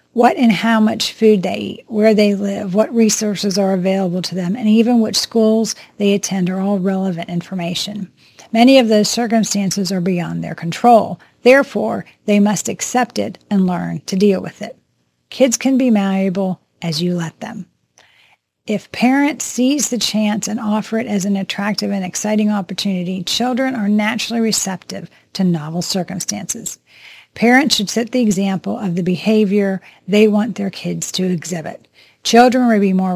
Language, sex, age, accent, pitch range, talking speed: English, female, 40-59, American, 190-225 Hz, 165 wpm